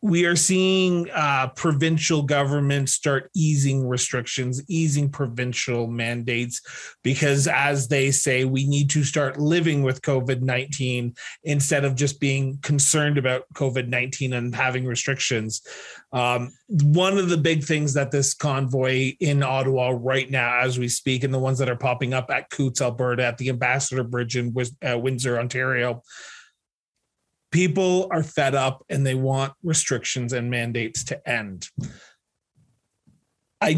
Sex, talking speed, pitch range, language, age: male, 140 wpm, 130-160 Hz, English, 30-49